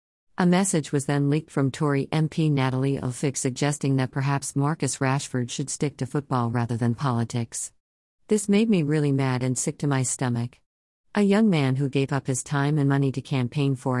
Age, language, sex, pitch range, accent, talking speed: 50-69, English, female, 130-155 Hz, American, 195 wpm